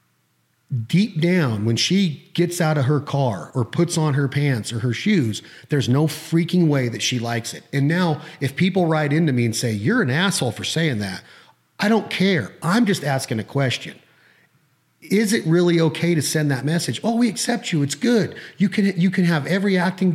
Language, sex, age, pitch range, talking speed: English, male, 30-49, 130-180 Hz, 205 wpm